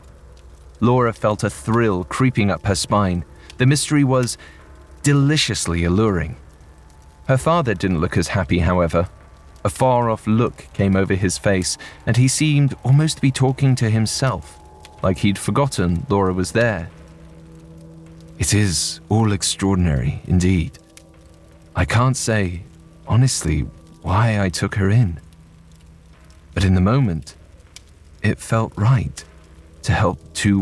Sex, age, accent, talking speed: male, 30-49, British, 130 wpm